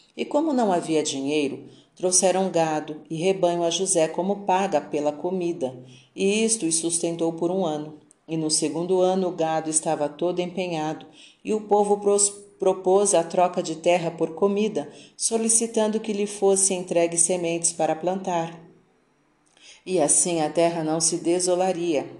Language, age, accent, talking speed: Portuguese, 40-59, Brazilian, 150 wpm